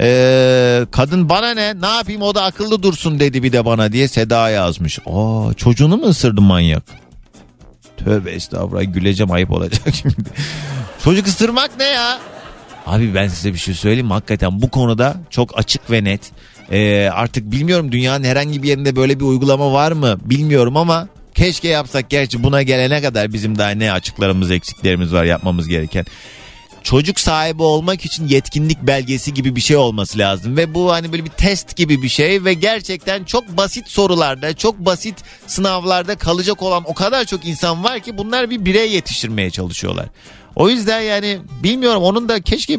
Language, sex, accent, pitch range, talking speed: Turkish, male, native, 105-170 Hz, 170 wpm